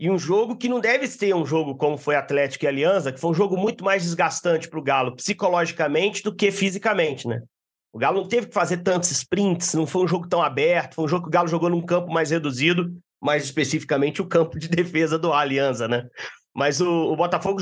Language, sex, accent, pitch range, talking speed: Portuguese, male, Brazilian, 160-205 Hz, 230 wpm